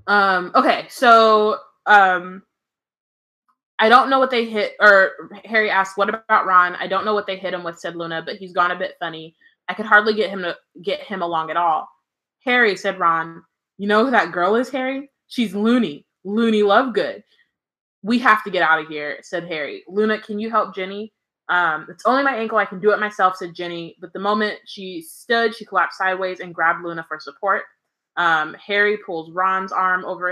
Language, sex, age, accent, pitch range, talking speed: English, female, 20-39, American, 175-215 Hz, 200 wpm